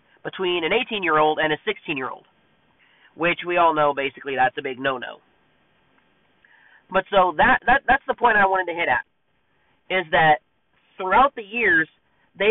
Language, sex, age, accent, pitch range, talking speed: English, male, 30-49, American, 175-225 Hz, 180 wpm